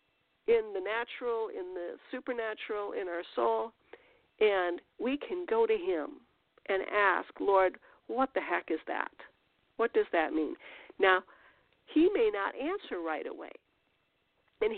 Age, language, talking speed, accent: 50-69, English, 140 wpm, American